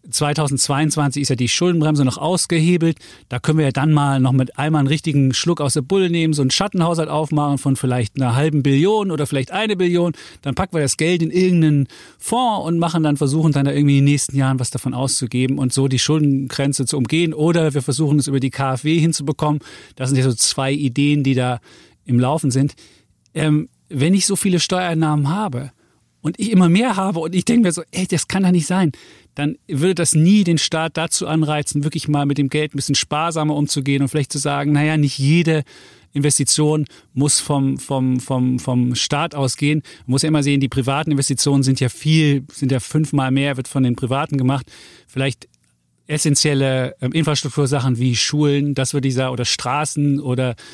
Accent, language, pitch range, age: German, German, 135-155 Hz, 40-59